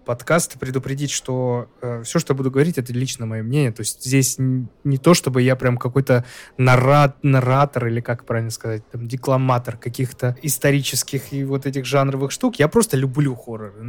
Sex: male